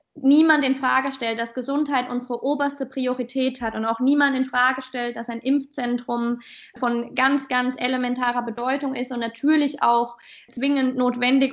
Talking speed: 155 wpm